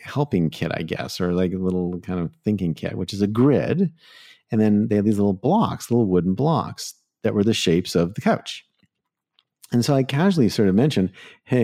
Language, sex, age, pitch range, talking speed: English, male, 50-69, 95-125 Hz, 210 wpm